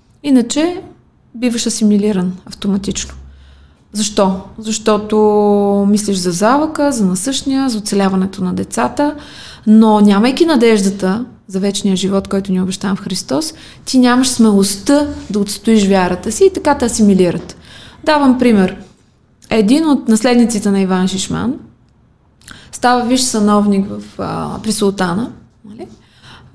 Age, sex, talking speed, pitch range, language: 20-39, female, 115 wpm, 195-265 Hz, Bulgarian